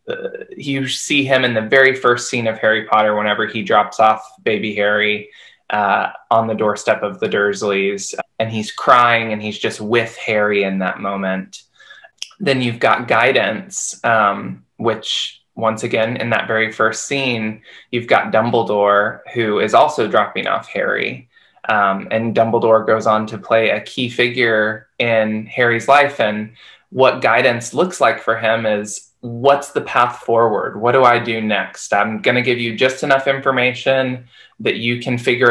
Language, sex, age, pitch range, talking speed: English, male, 20-39, 105-120 Hz, 170 wpm